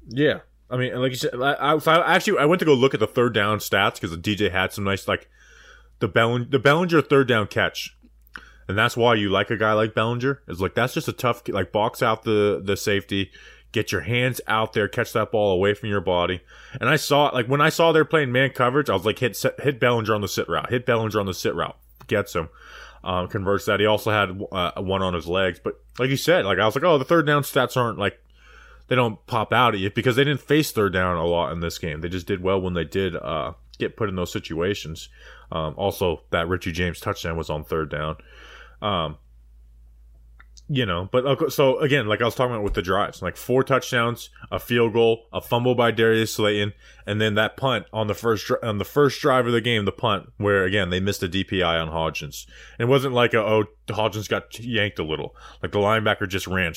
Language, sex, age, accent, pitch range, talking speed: English, male, 20-39, American, 90-120 Hz, 240 wpm